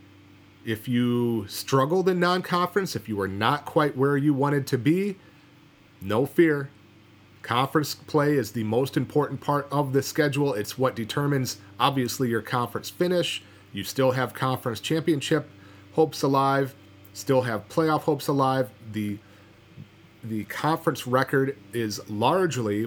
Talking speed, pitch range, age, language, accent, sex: 135 wpm, 105-140 Hz, 30-49, English, American, male